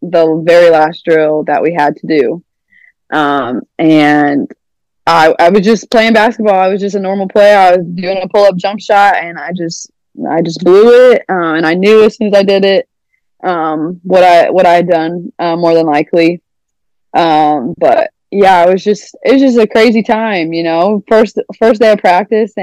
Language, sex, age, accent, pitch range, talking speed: English, female, 20-39, American, 170-210 Hz, 210 wpm